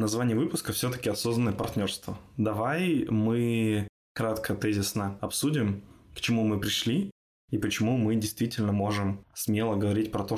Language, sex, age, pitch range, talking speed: Russian, male, 20-39, 100-115 Hz, 135 wpm